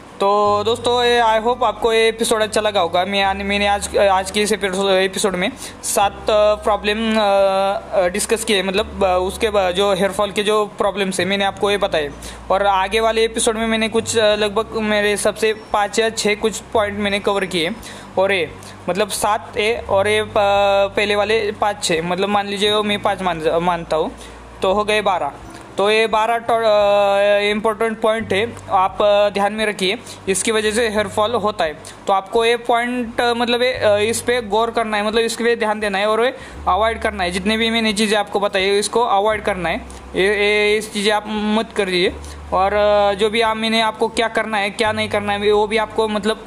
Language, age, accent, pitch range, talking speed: Hindi, 20-39, native, 200-220 Hz, 195 wpm